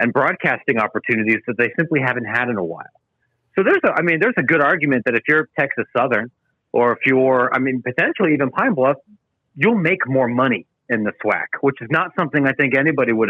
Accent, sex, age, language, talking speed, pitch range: American, male, 40-59, English, 220 wpm, 125-165 Hz